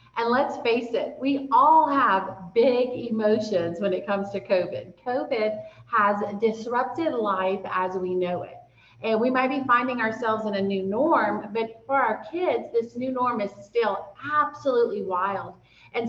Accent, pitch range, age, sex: American, 200-260 Hz, 30-49, female